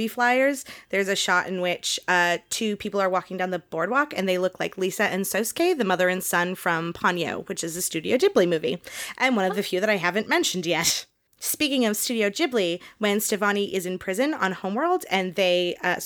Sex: female